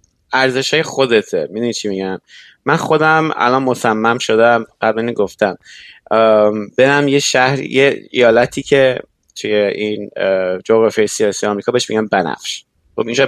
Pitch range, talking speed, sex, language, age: 115-150 Hz, 120 wpm, male, Persian, 30-49